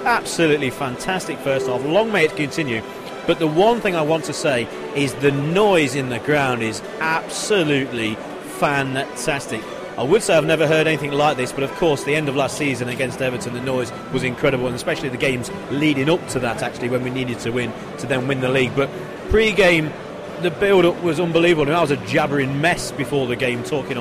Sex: male